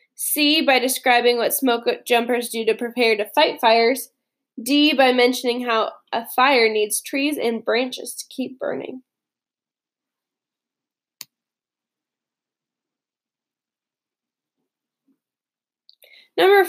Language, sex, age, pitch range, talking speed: English, female, 10-29, 230-285 Hz, 95 wpm